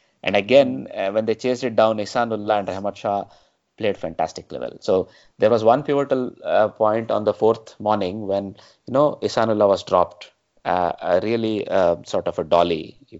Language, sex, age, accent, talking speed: English, male, 20-39, Indian, 190 wpm